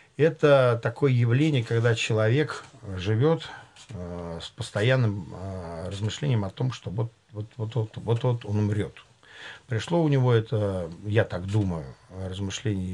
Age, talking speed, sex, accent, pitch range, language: 50-69, 115 wpm, male, native, 95-115 Hz, Russian